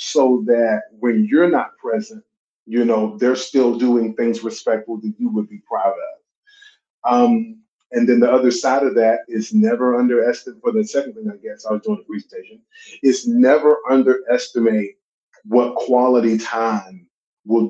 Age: 30-49